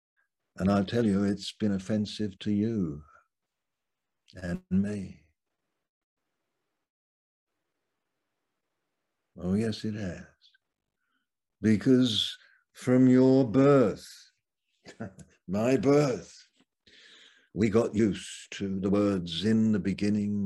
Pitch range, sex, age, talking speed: 90-110 Hz, male, 60-79, 90 wpm